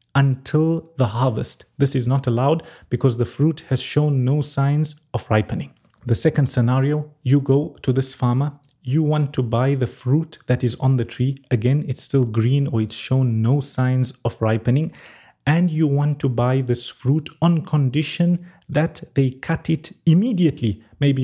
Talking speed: 170 wpm